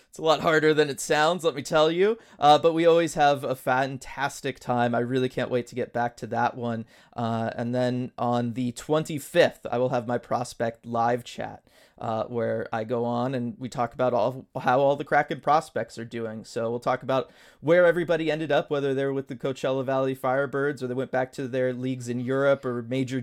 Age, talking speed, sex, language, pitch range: 30-49, 220 wpm, male, English, 120-150 Hz